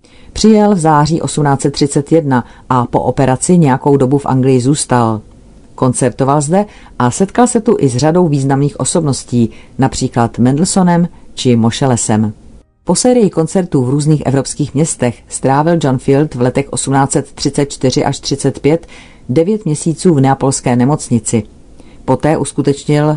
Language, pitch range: Czech, 125-150 Hz